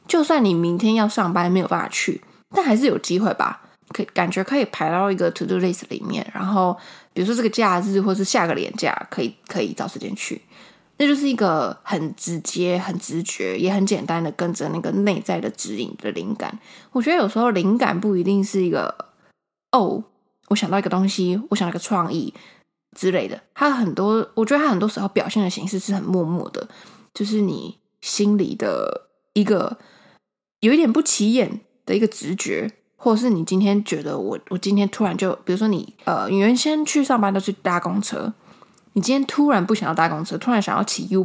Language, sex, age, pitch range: Chinese, female, 20-39, 185-220 Hz